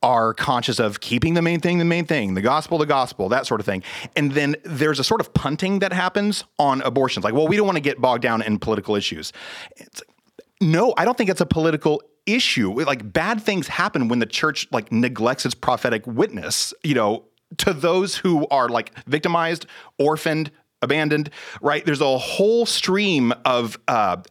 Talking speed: 195 wpm